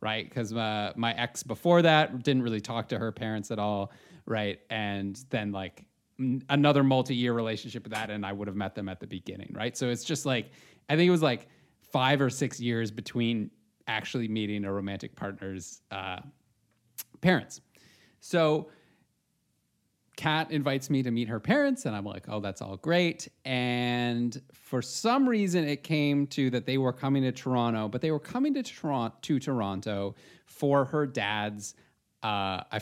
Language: English